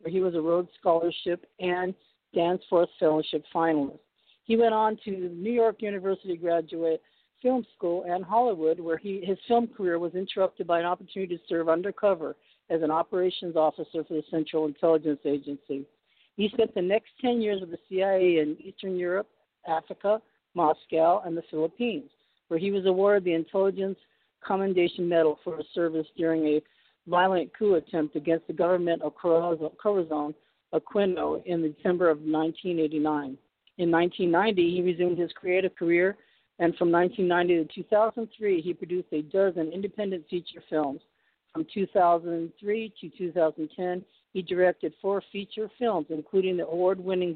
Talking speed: 150 wpm